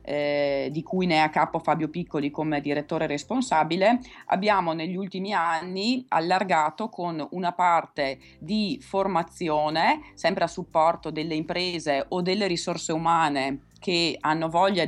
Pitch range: 150-185 Hz